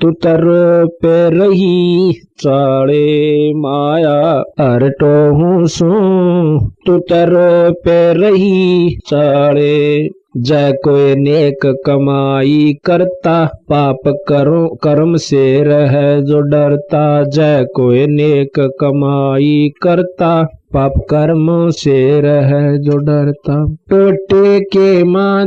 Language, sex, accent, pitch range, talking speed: Hindi, male, native, 140-180 Hz, 80 wpm